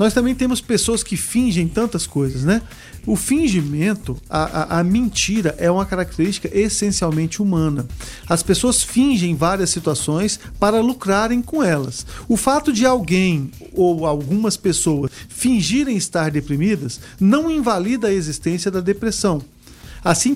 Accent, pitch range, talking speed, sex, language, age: Brazilian, 165-220 Hz, 135 wpm, male, Portuguese, 50-69